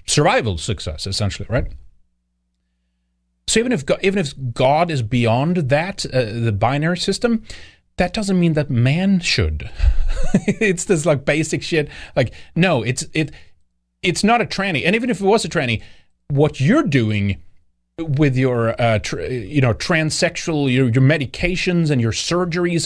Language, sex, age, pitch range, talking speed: English, male, 30-49, 100-155 Hz, 160 wpm